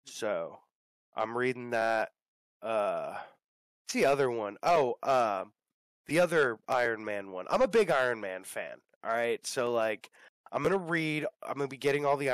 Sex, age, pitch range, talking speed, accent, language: male, 20-39, 110-130 Hz, 170 wpm, American, English